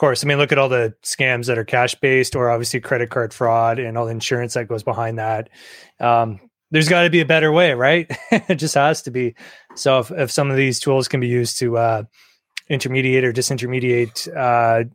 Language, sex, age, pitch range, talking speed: English, male, 20-39, 120-140 Hz, 215 wpm